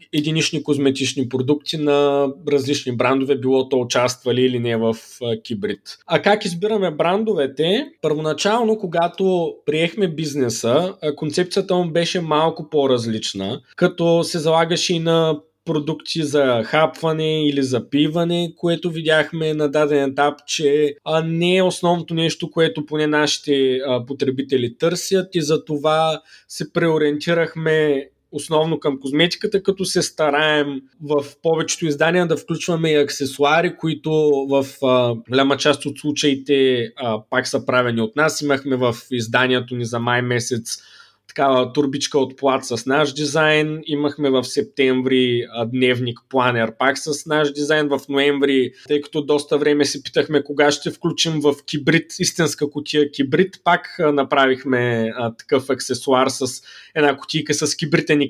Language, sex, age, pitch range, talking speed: Bulgarian, male, 20-39, 135-160 Hz, 135 wpm